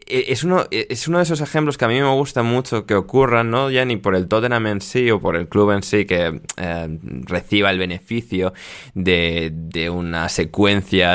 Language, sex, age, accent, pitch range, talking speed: Spanish, male, 20-39, Spanish, 90-115 Hz, 205 wpm